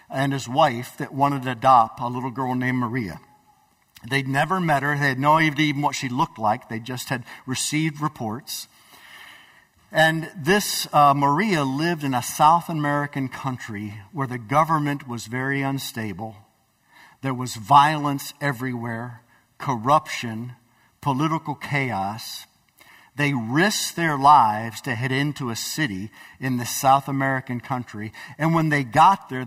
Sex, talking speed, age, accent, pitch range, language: male, 145 wpm, 50-69, American, 120-145 Hz, English